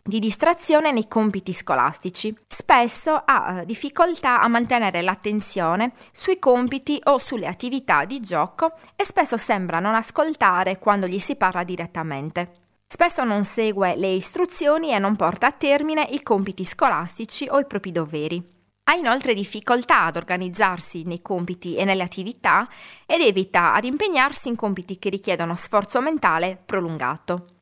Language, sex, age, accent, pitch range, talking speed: Italian, female, 30-49, native, 180-270 Hz, 145 wpm